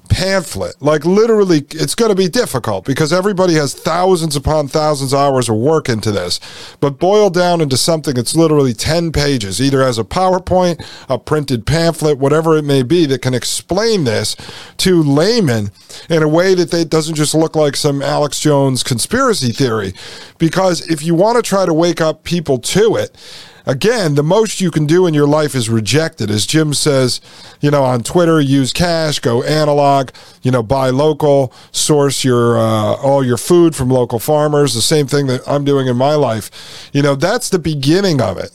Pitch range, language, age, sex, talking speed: 130-170 Hz, English, 40-59, male, 190 wpm